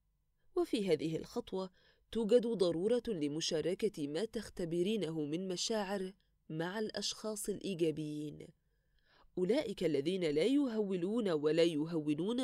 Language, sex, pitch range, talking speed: Arabic, female, 160-230 Hz, 90 wpm